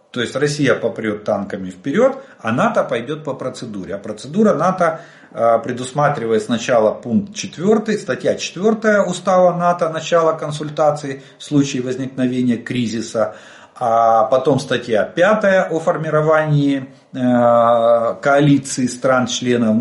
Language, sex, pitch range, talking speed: Russian, male, 115-160 Hz, 110 wpm